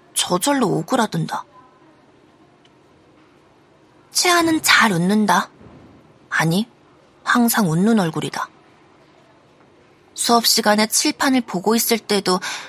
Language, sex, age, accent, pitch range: Korean, female, 20-39, native, 195-265 Hz